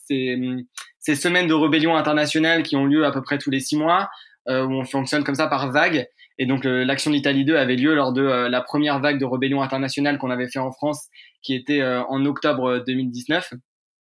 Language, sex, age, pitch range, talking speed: French, male, 20-39, 130-150 Hz, 225 wpm